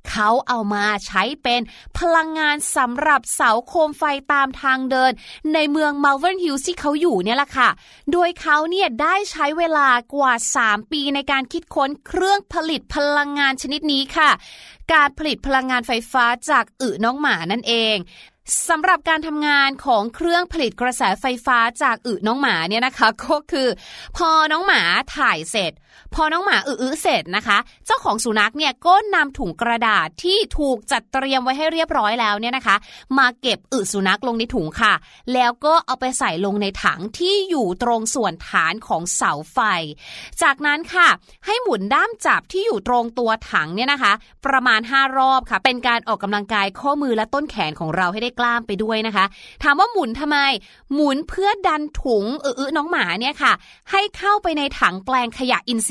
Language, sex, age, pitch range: Thai, female, 20-39, 230-310 Hz